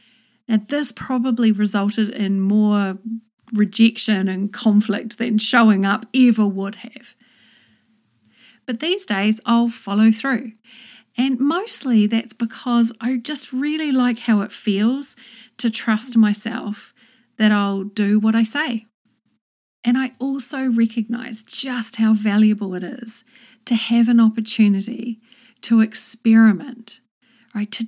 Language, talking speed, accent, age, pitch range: English, 125 wpm, Australian, 40-59, 215-240 Hz